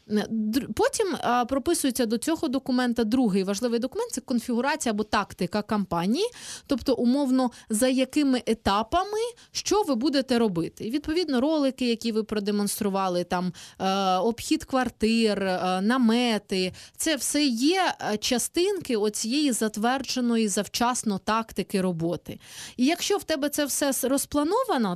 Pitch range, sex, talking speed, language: 205-275 Hz, female, 115 wpm, Ukrainian